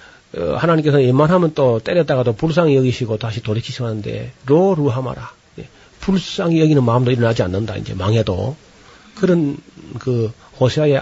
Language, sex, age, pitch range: Korean, male, 40-59, 115-155 Hz